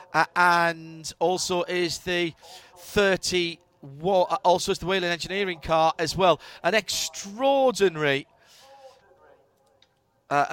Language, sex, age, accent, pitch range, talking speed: English, male, 40-59, British, 170-220 Hz, 95 wpm